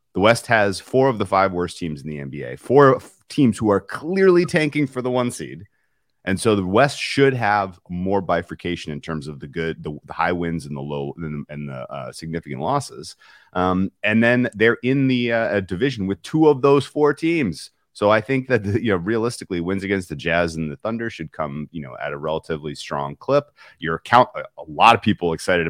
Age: 30-49